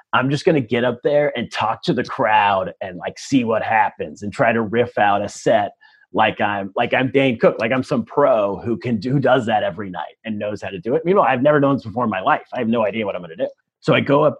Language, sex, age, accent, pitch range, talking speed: English, male, 30-49, American, 115-150 Hz, 290 wpm